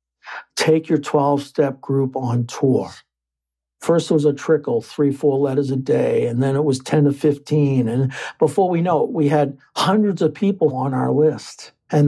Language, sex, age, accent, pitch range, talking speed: English, male, 60-79, American, 135-150 Hz, 185 wpm